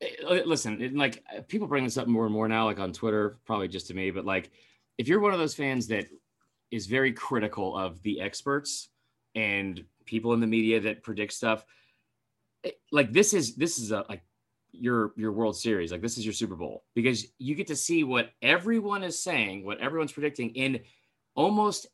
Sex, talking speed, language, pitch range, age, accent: male, 195 wpm, English, 105-150 Hz, 30-49, American